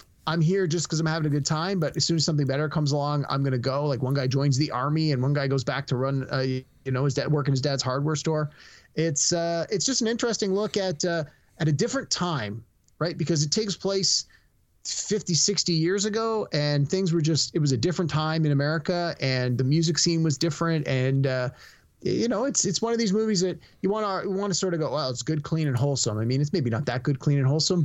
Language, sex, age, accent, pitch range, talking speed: English, male, 30-49, American, 130-170 Hz, 260 wpm